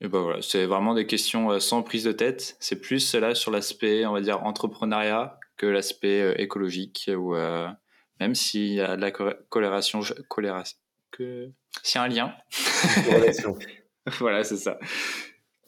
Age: 20-39